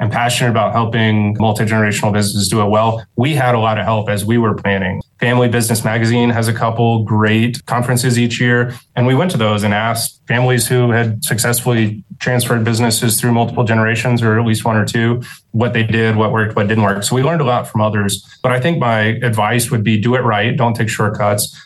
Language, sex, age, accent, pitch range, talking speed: English, male, 20-39, American, 110-120 Hz, 220 wpm